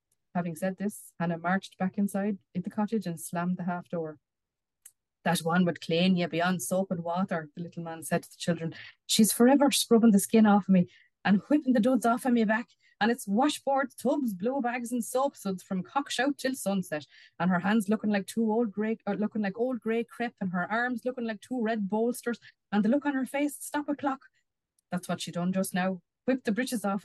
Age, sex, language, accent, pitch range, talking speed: 20-39, female, English, Irish, 170-235 Hz, 230 wpm